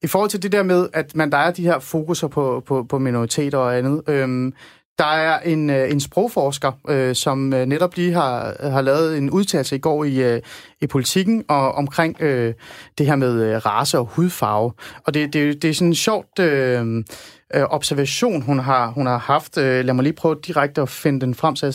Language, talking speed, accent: Danish, 205 wpm, native